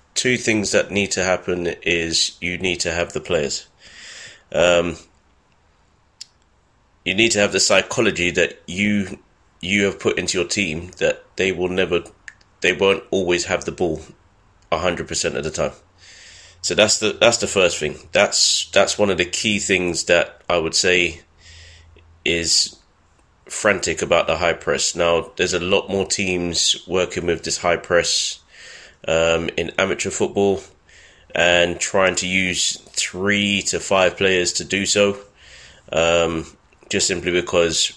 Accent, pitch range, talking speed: British, 85-100 Hz, 155 wpm